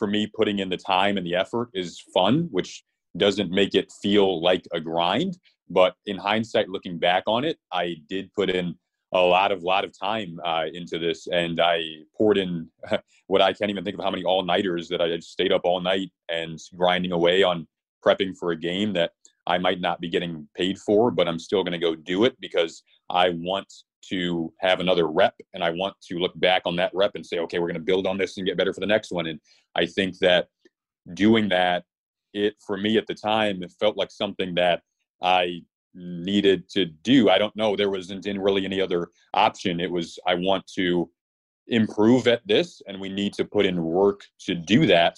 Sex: male